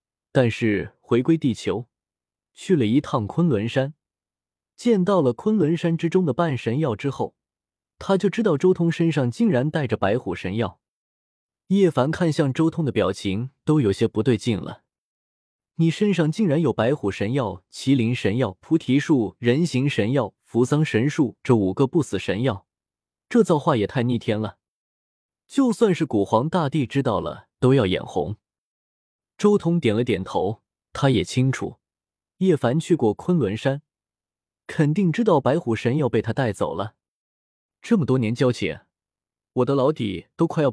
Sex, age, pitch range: male, 20-39, 110-165 Hz